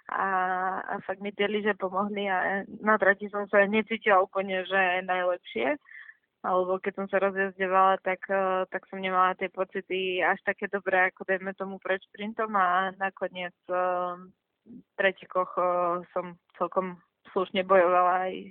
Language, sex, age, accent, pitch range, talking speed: English, female, 20-39, Czech, 185-200 Hz, 145 wpm